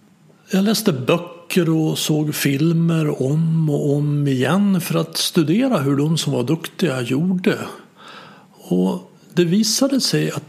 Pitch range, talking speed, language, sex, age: 145-200 Hz, 135 wpm, Swedish, male, 60-79